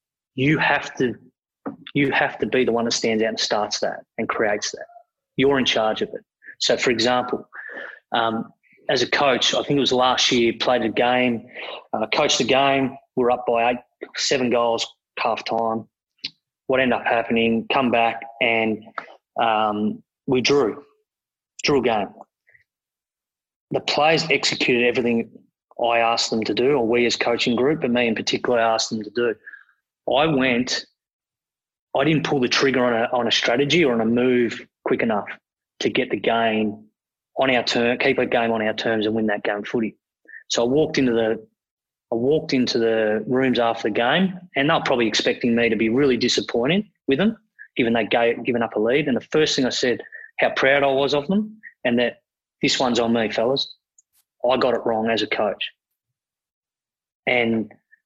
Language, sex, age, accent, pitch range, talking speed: English, male, 30-49, Australian, 115-130 Hz, 185 wpm